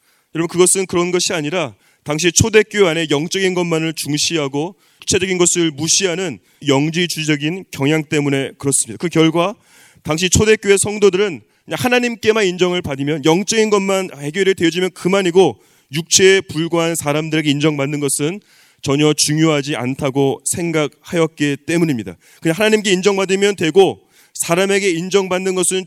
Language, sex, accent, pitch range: Korean, male, native, 155-195 Hz